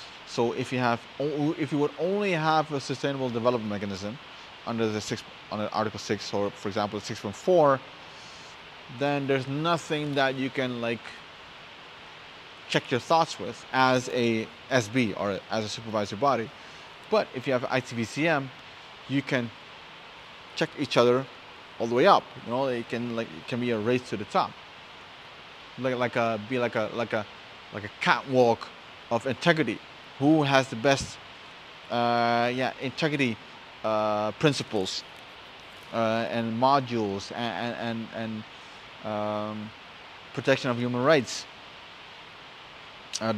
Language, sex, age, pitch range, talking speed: English, male, 30-49, 115-140 Hz, 145 wpm